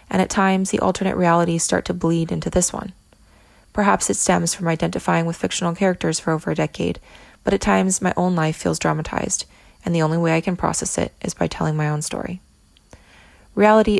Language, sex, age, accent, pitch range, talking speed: English, female, 20-39, American, 160-185 Hz, 200 wpm